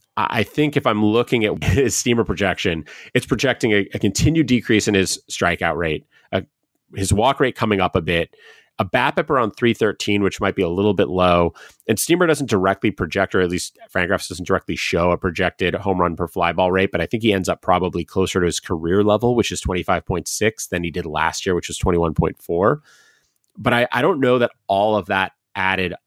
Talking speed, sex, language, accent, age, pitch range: 215 wpm, male, English, American, 30-49, 85-105 Hz